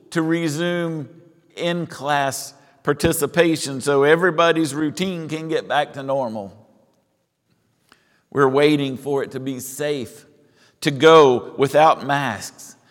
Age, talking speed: 50-69, 105 wpm